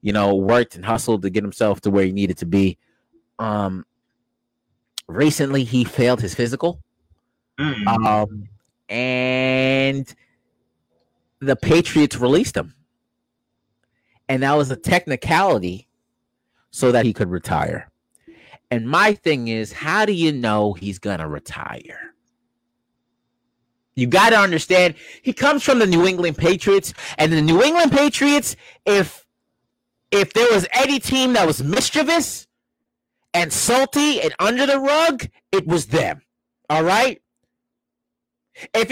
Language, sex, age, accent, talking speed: English, male, 30-49, American, 130 wpm